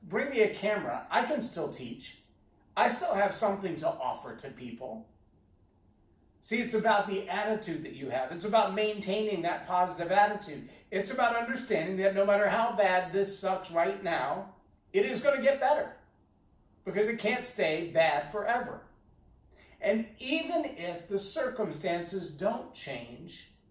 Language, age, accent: English, 40-59, American